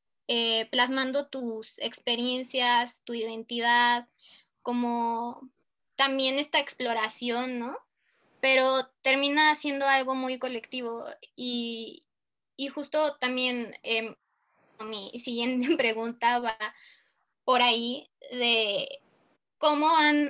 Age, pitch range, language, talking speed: 20-39, 235-270 Hz, Spanish, 90 wpm